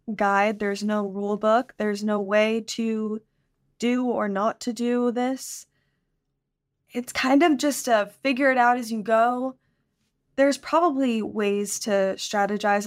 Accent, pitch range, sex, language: American, 205-245 Hz, female, English